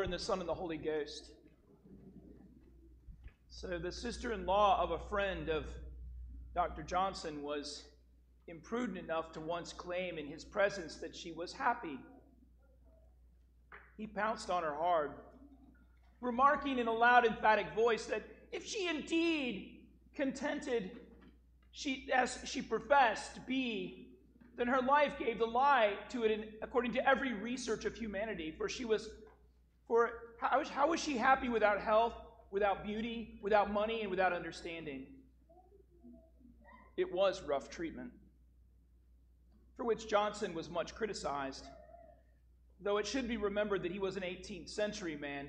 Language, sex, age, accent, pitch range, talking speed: English, male, 40-59, American, 145-235 Hz, 135 wpm